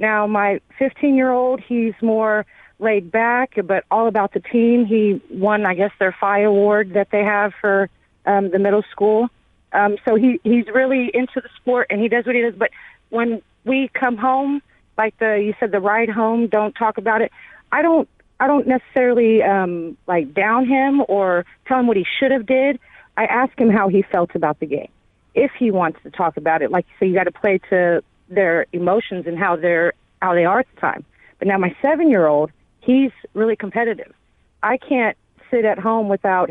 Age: 40-59